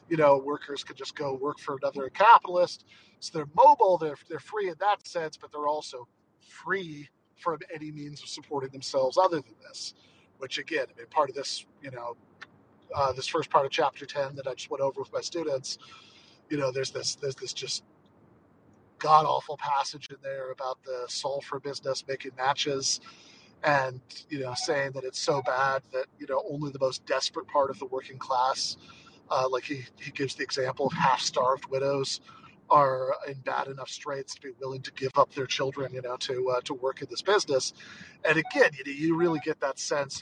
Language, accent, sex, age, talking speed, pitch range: English, American, male, 40-59, 200 wpm, 135-170 Hz